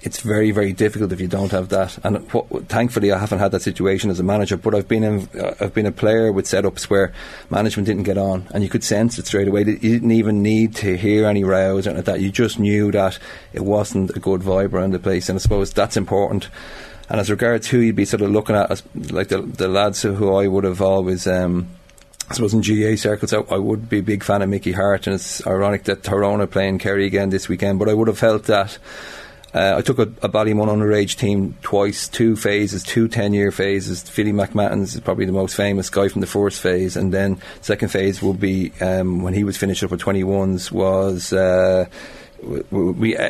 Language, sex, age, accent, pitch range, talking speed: English, male, 30-49, Irish, 95-105 Hz, 230 wpm